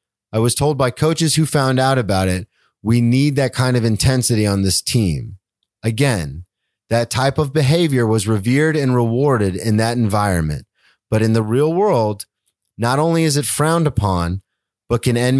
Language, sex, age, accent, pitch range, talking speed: English, male, 30-49, American, 100-130 Hz, 175 wpm